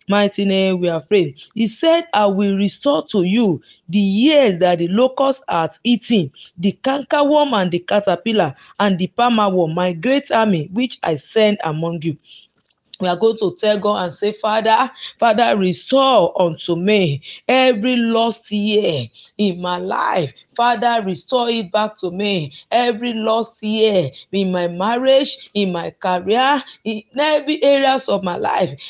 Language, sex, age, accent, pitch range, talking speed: English, female, 40-59, Nigerian, 185-240 Hz, 155 wpm